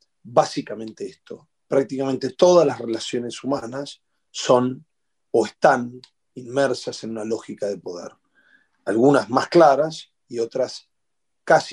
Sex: male